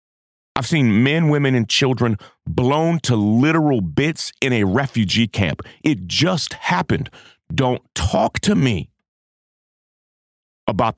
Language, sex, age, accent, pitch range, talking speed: English, male, 40-59, American, 100-145 Hz, 120 wpm